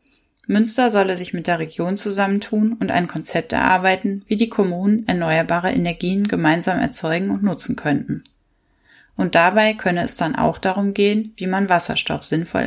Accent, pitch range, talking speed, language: German, 165-210 Hz, 155 wpm, German